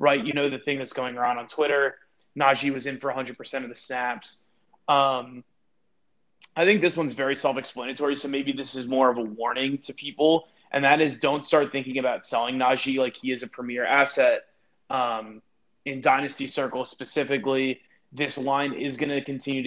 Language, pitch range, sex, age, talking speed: English, 125-140 Hz, male, 20-39, 185 wpm